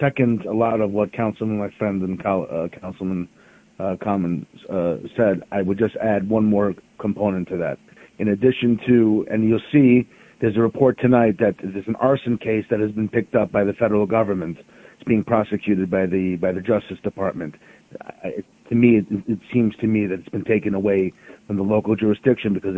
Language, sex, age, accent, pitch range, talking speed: English, male, 40-59, American, 100-120 Hz, 200 wpm